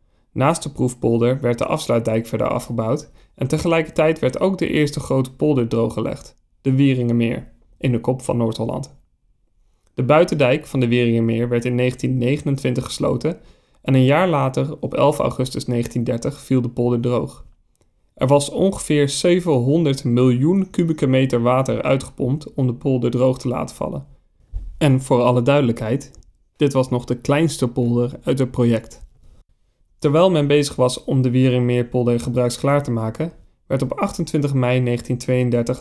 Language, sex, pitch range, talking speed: Dutch, male, 120-140 Hz, 150 wpm